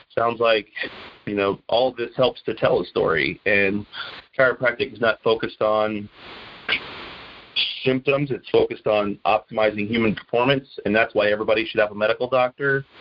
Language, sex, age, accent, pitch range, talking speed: English, male, 30-49, American, 105-125 Hz, 150 wpm